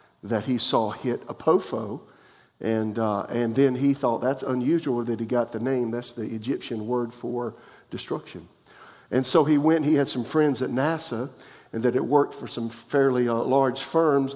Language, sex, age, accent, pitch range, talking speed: English, male, 50-69, American, 120-145 Hz, 185 wpm